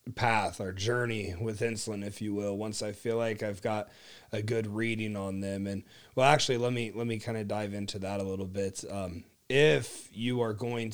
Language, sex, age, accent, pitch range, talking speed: English, male, 30-49, American, 115-130 Hz, 215 wpm